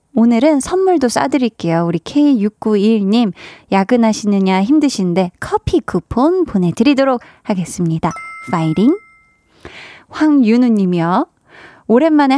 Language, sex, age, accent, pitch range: Korean, female, 20-39, native, 195-265 Hz